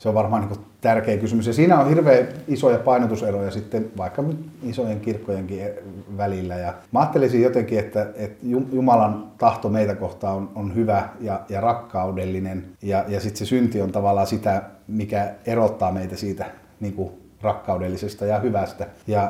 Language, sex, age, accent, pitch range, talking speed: Finnish, male, 30-49, native, 100-115 Hz, 150 wpm